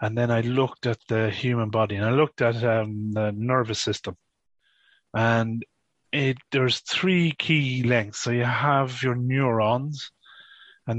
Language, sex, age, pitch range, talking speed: English, male, 30-49, 110-125 Hz, 145 wpm